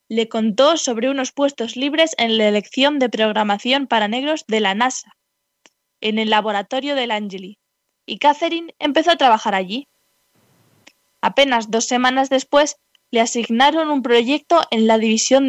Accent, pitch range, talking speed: Spanish, 220-275 Hz, 145 wpm